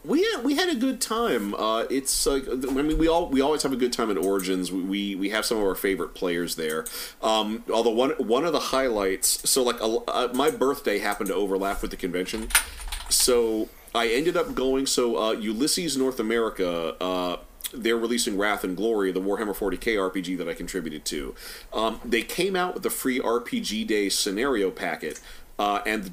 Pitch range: 95-125 Hz